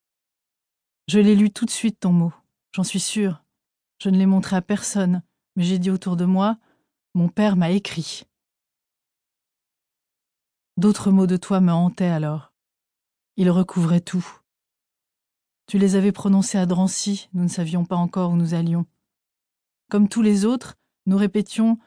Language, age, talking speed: French, 30-49, 165 wpm